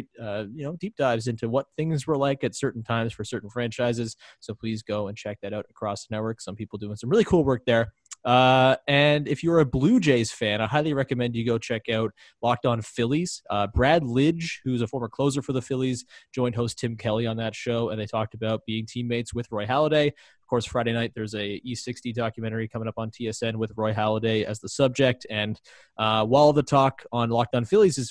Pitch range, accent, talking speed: 110-140 Hz, American, 220 wpm